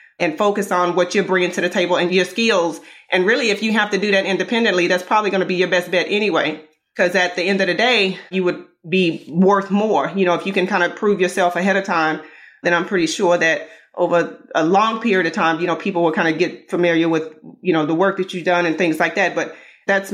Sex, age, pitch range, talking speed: female, 30-49, 175-205 Hz, 260 wpm